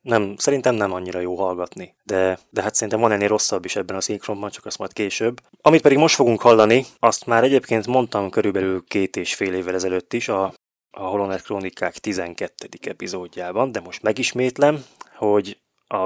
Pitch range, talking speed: 95-115 Hz, 180 wpm